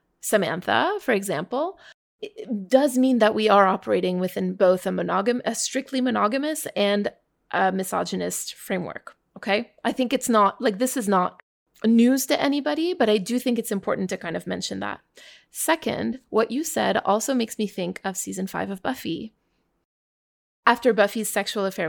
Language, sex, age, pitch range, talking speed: English, female, 20-39, 190-245 Hz, 165 wpm